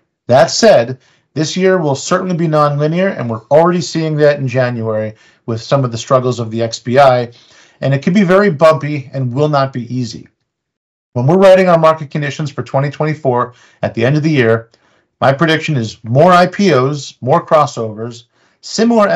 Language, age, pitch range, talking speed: English, 40-59, 120-160 Hz, 175 wpm